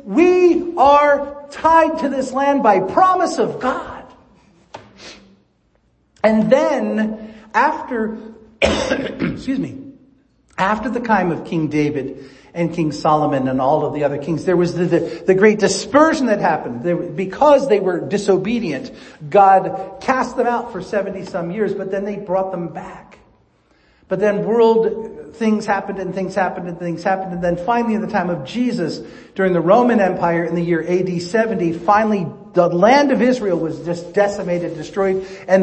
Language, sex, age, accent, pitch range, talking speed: English, male, 50-69, American, 175-245 Hz, 160 wpm